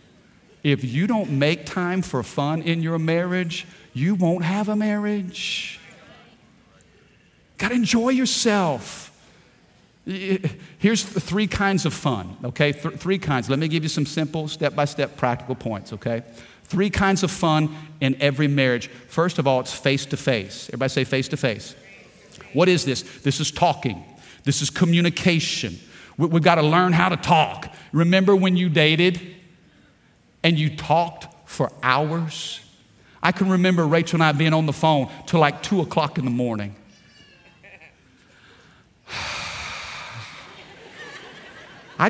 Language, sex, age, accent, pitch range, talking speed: English, male, 40-59, American, 150-205 Hz, 140 wpm